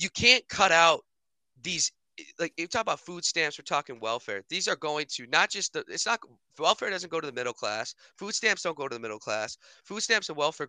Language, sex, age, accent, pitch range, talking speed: English, male, 20-39, American, 130-165 Hz, 245 wpm